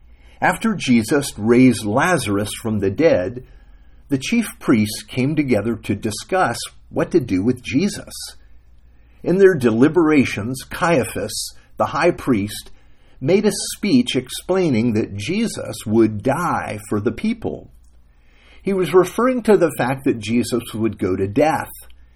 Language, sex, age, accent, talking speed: English, male, 50-69, American, 135 wpm